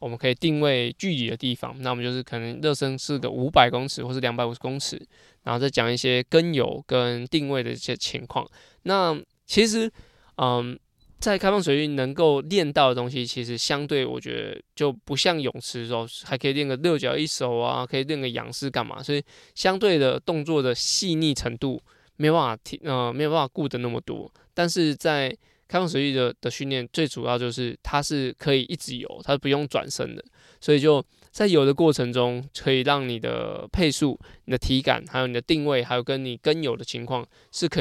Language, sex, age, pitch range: Chinese, male, 20-39, 125-155 Hz